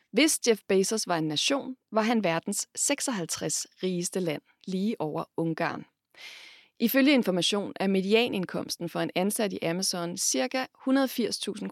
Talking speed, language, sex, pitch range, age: 130 wpm, Danish, female, 170-225 Hz, 30-49